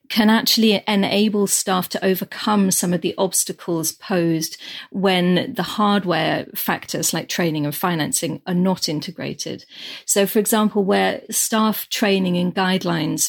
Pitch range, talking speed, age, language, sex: 170-205 Hz, 135 wpm, 40-59, English, female